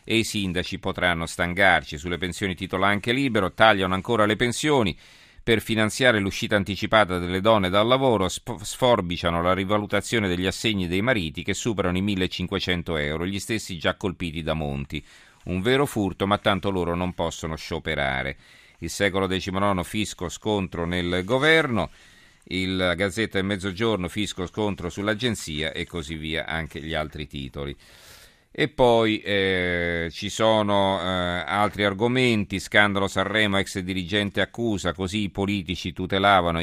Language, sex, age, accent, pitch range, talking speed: Italian, male, 40-59, native, 85-105 Hz, 145 wpm